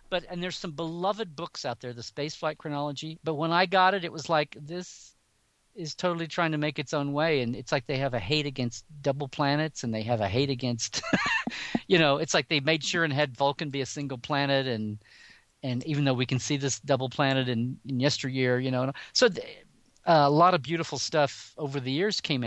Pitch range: 120-160 Hz